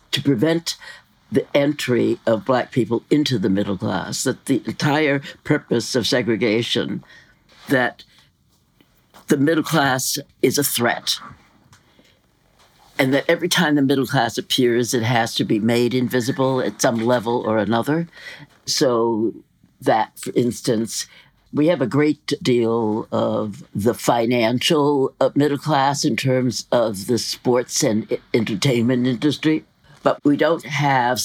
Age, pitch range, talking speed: 60-79, 120-145 Hz, 135 wpm